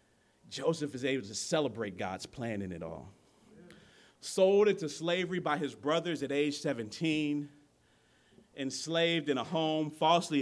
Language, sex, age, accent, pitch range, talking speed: English, male, 40-59, American, 135-170 Hz, 140 wpm